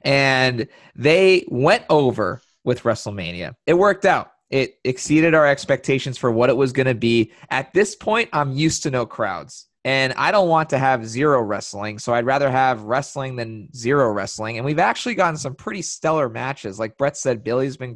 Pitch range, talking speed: 110-140 Hz, 190 wpm